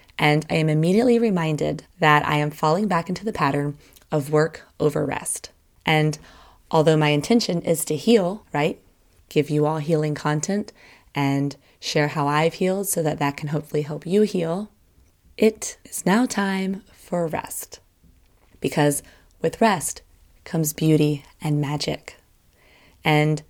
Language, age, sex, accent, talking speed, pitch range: English, 20-39, female, American, 145 wpm, 150-175 Hz